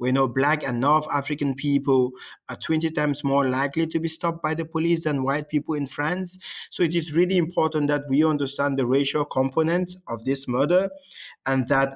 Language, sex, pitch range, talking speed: English, male, 130-155 Hz, 195 wpm